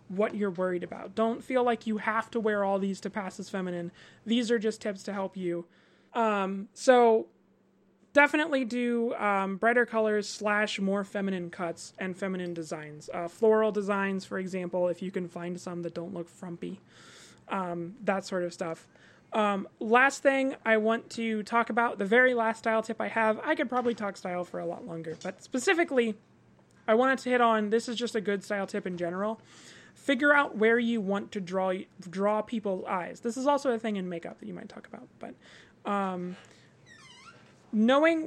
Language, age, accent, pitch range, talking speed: English, 20-39, American, 190-230 Hz, 190 wpm